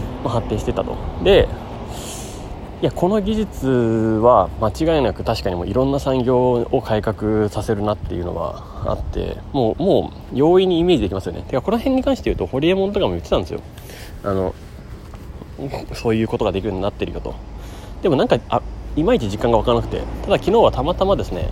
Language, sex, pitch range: Japanese, male, 95-120 Hz